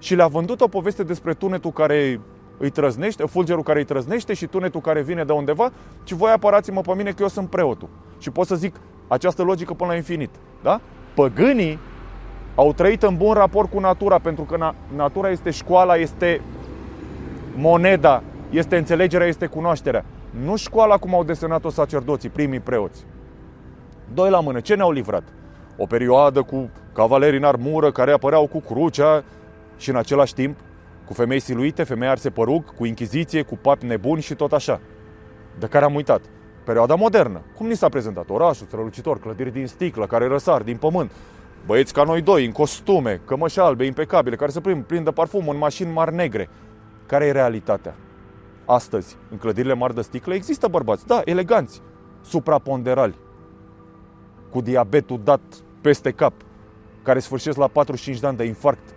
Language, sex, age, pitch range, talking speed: Romanian, male, 30-49, 120-175 Hz, 170 wpm